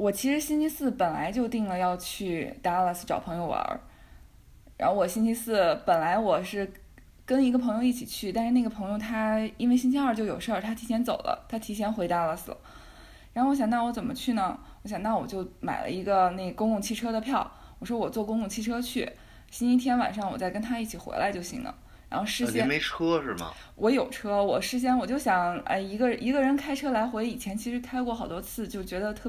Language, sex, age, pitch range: Chinese, female, 20-39, 195-245 Hz